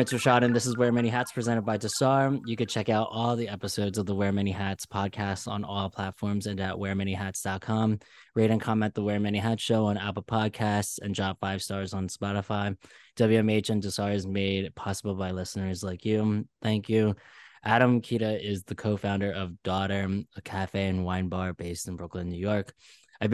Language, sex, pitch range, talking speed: English, male, 95-110 Hz, 195 wpm